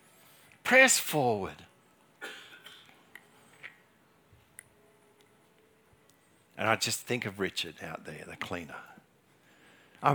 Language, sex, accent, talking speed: English, male, Australian, 75 wpm